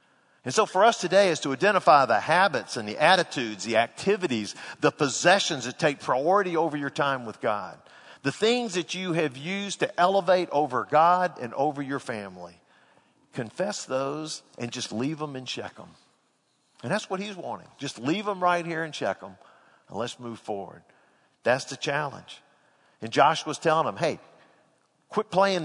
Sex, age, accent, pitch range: male, 50-69, American, 115-170 Hz